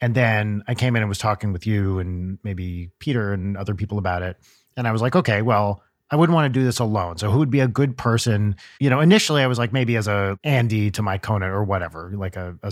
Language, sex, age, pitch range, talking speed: English, male, 30-49, 100-130 Hz, 265 wpm